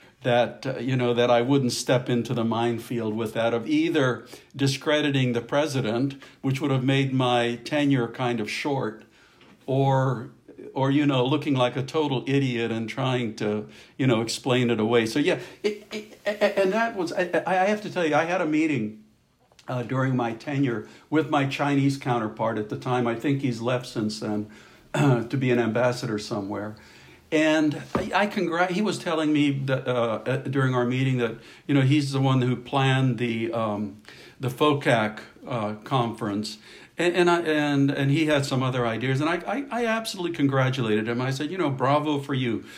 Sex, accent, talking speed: male, American, 190 wpm